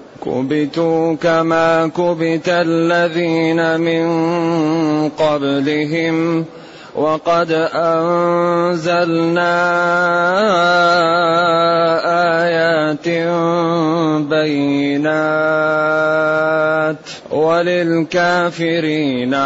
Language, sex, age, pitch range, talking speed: Arabic, male, 30-49, 155-175 Hz, 35 wpm